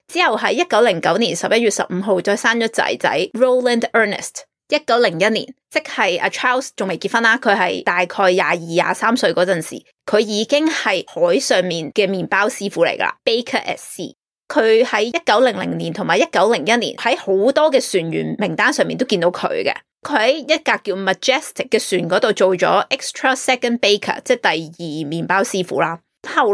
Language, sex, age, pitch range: Chinese, female, 20-39, 190-260 Hz